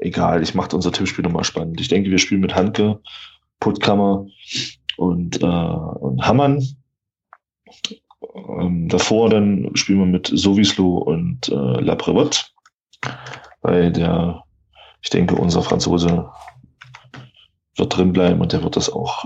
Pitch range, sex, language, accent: 90-105 Hz, male, German, German